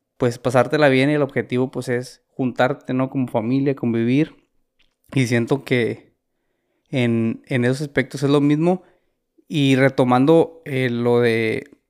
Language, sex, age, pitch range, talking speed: Spanish, male, 20-39, 125-145 Hz, 140 wpm